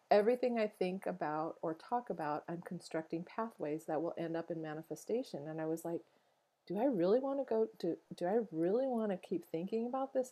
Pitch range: 160-220 Hz